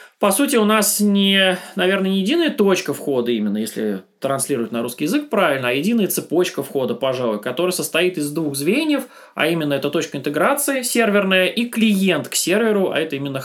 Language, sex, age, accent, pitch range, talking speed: Russian, male, 20-39, native, 145-200 Hz, 175 wpm